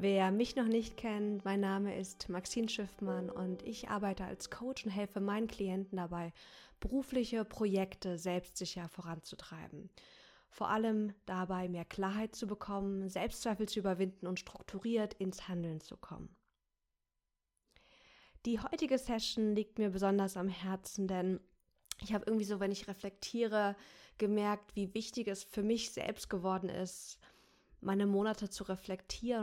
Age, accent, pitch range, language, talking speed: 20-39, German, 185-215 Hz, German, 140 wpm